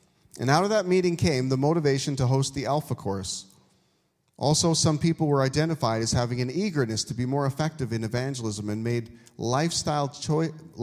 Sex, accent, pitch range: male, American, 115-150 Hz